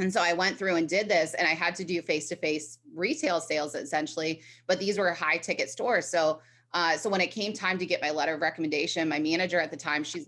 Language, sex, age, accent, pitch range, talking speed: English, female, 20-39, American, 155-185 Hz, 245 wpm